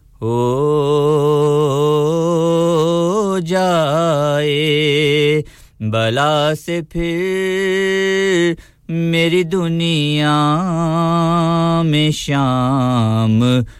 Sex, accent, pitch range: male, Indian, 150-200 Hz